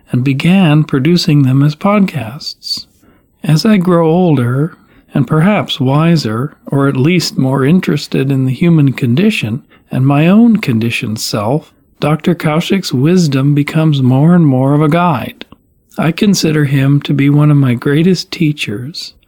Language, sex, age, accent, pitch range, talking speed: English, male, 40-59, American, 135-165 Hz, 145 wpm